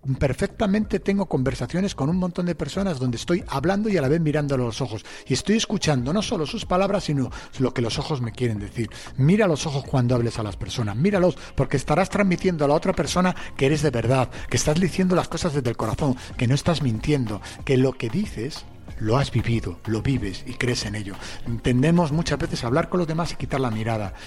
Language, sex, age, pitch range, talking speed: Spanish, male, 40-59, 120-170 Hz, 225 wpm